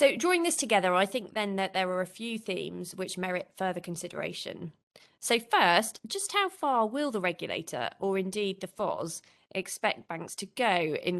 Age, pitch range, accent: 20-39, 175-215 Hz, British